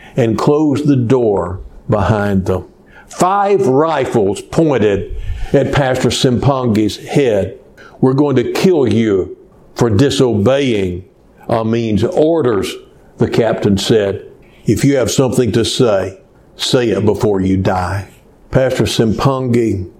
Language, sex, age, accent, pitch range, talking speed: English, male, 60-79, American, 115-170 Hz, 115 wpm